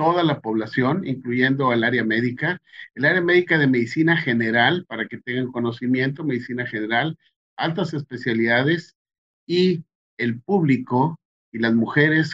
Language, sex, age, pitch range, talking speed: Spanish, male, 50-69, 115-155 Hz, 130 wpm